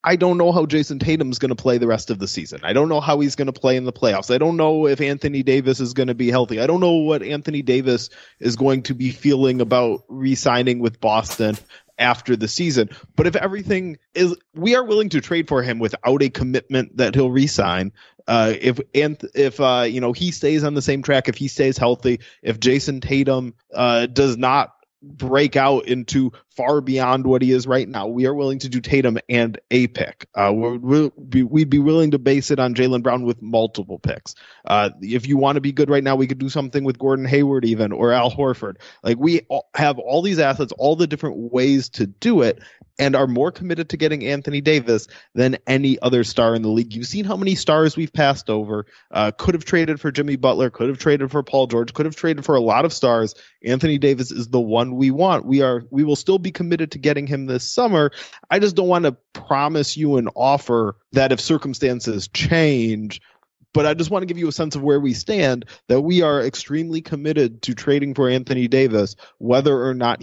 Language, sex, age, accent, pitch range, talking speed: English, male, 20-39, American, 125-150 Hz, 225 wpm